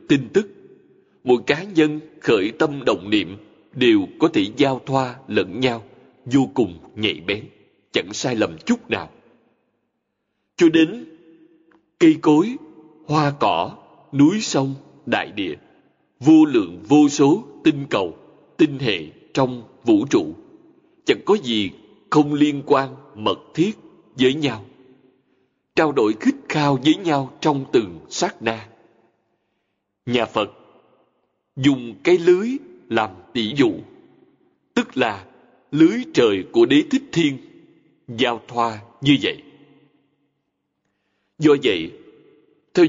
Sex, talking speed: male, 125 wpm